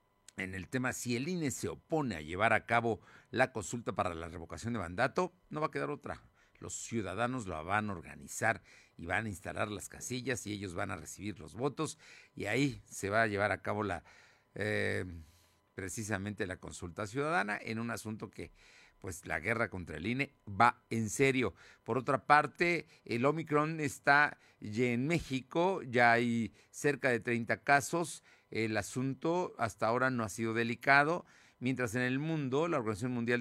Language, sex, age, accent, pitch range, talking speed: Spanish, male, 50-69, Mexican, 100-135 Hz, 180 wpm